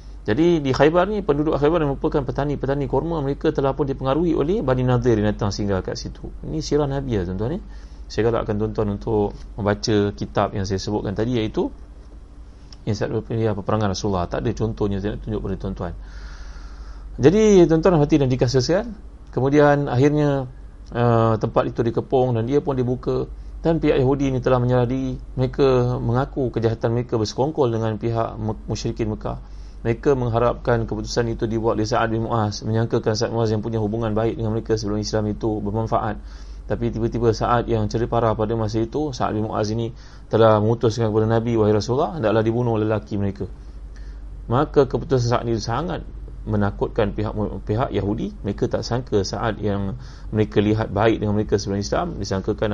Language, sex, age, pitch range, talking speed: Malay, male, 30-49, 105-125 Hz, 170 wpm